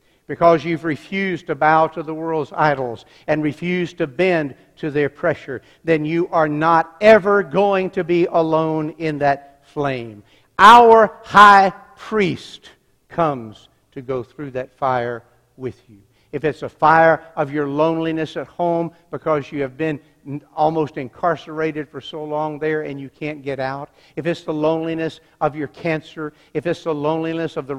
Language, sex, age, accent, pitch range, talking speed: English, male, 60-79, American, 125-160 Hz, 165 wpm